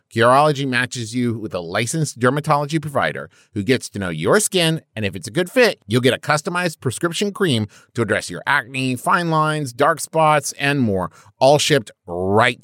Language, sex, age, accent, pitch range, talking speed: English, male, 30-49, American, 110-150 Hz, 185 wpm